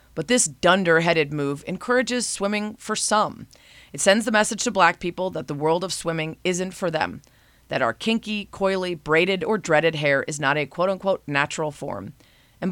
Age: 30-49